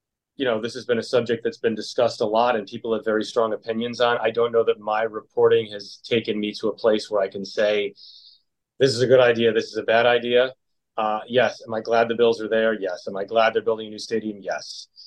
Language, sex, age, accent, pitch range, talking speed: English, male, 30-49, American, 105-130 Hz, 255 wpm